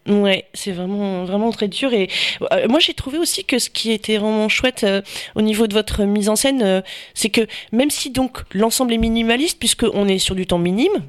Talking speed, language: 225 wpm, French